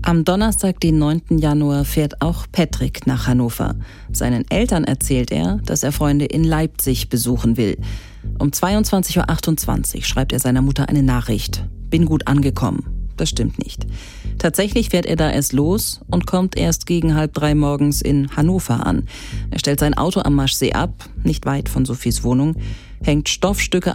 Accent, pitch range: German, 130-165 Hz